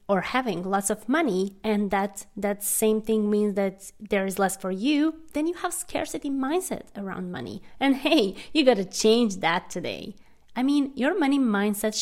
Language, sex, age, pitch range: English, female, 20-39, 195-265 Hz